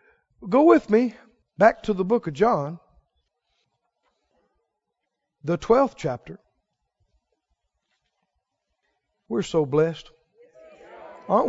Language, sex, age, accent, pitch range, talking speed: English, male, 60-79, American, 165-240 Hz, 85 wpm